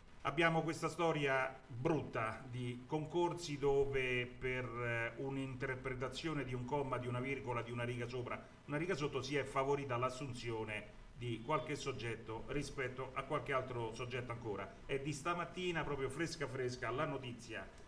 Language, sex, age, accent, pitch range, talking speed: Italian, male, 40-59, native, 120-145 Hz, 150 wpm